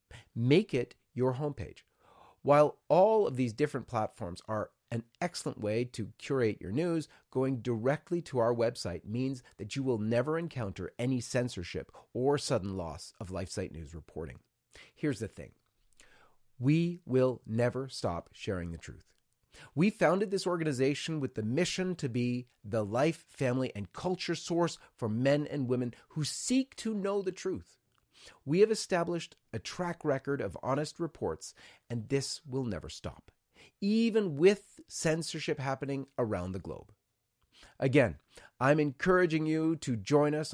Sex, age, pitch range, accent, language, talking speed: male, 40-59, 110-155 Hz, American, English, 150 wpm